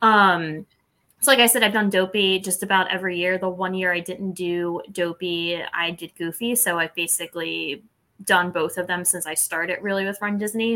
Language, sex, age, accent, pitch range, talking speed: English, female, 20-39, American, 175-220 Hz, 200 wpm